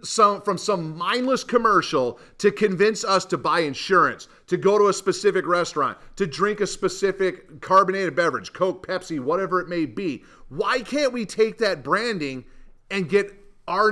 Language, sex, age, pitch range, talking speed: English, male, 40-59, 170-215 Hz, 165 wpm